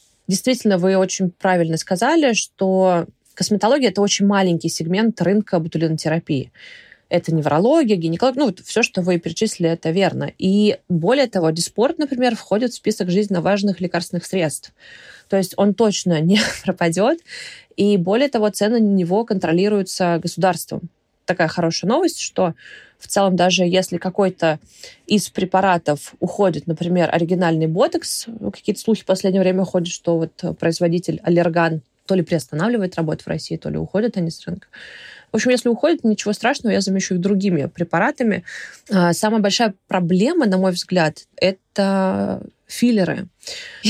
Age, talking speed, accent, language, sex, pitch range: 20-39, 145 wpm, native, Russian, female, 170-210 Hz